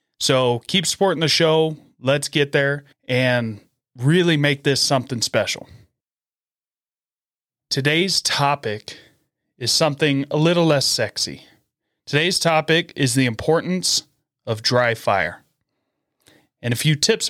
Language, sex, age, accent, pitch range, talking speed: English, male, 30-49, American, 130-150 Hz, 120 wpm